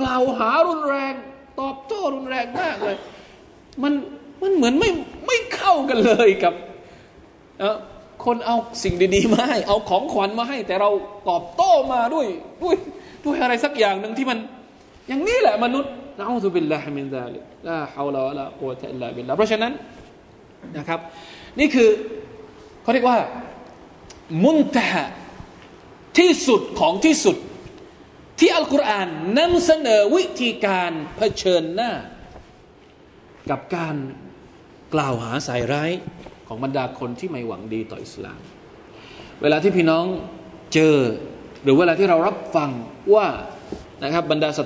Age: 20-39